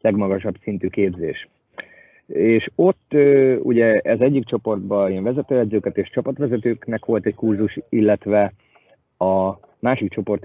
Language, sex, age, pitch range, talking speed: Hungarian, male, 30-49, 100-115 Hz, 115 wpm